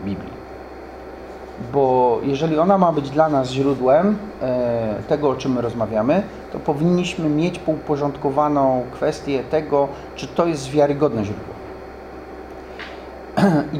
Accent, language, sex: native, Polish, male